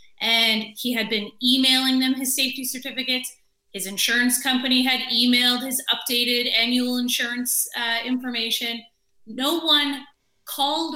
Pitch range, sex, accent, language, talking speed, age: 220-265 Hz, female, American, English, 125 wpm, 30-49